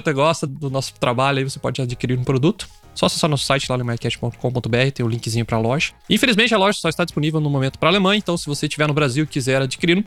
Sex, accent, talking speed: male, Brazilian, 275 wpm